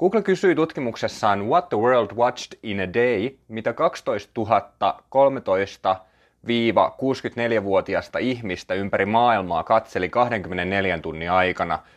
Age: 30-49